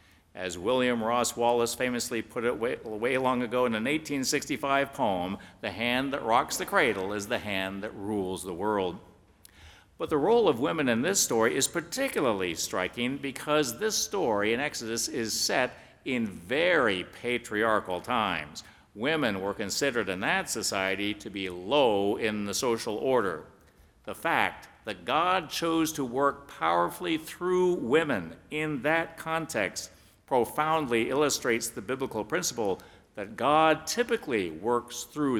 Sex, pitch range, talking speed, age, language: male, 105-140 Hz, 145 wpm, 60-79, English